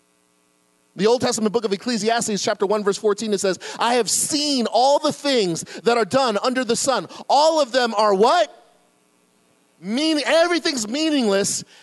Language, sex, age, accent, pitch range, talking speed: English, male, 40-59, American, 195-280 Hz, 160 wpm